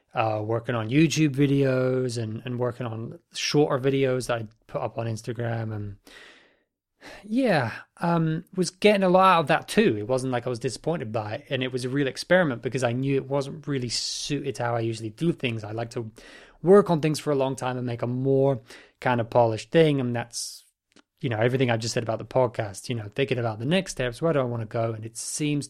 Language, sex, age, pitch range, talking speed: English, male, 20-39, 115-140 Hz, 235 wpm